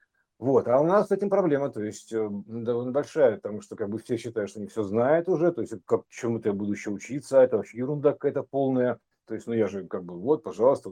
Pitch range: 120-180 Hz